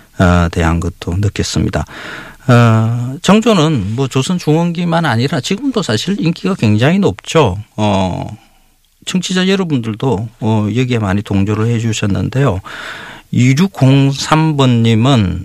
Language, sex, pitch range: Korean, male, 95-140 Hz